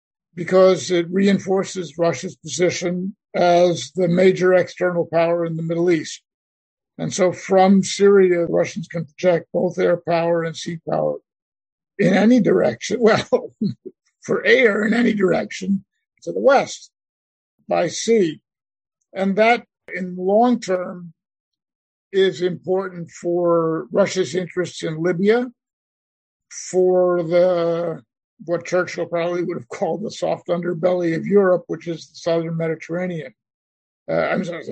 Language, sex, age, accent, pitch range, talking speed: English, male, 50-69, American, 170-190 Hz, 130 wpm